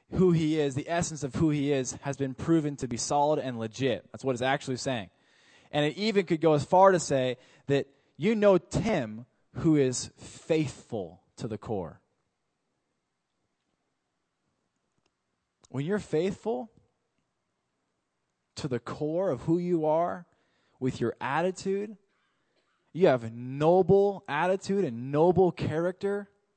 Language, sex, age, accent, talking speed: English, male, 20-39, American, 140 wpm